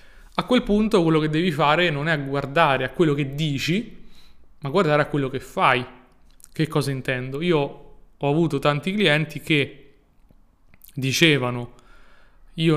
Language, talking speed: Italian, 155 wpm